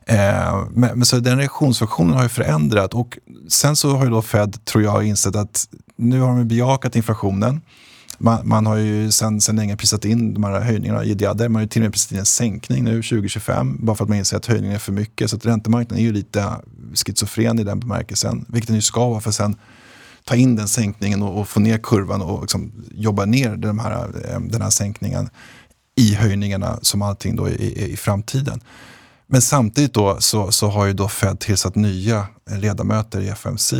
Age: 30-49